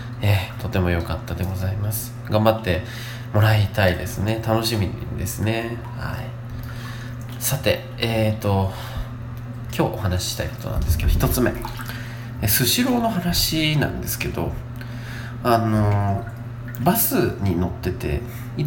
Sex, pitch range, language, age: male, 110-125 Hz, Japanese, 20-39